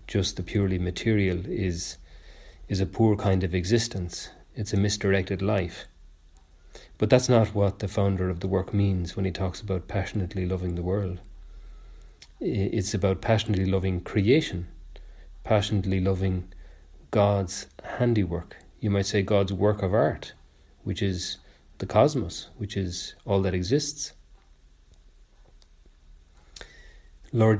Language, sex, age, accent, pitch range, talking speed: English, male, 40-59, Irish, 90-110 Hz, 130 wpm